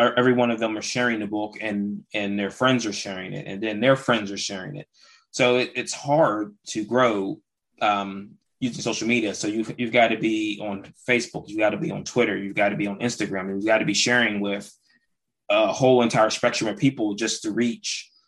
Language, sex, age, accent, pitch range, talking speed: English, male, 20-39, American, 105-120 Hz, 225 wpm